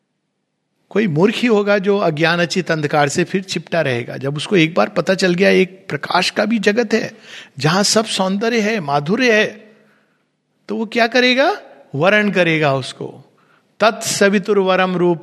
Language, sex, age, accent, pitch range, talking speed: Hindi, male, 50-69, native, 165-220 Hz, 155 wpm